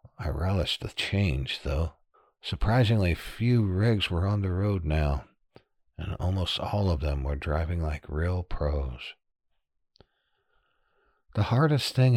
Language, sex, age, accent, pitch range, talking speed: English, male, 60-79, American, 75-100 Hz, 130 wpm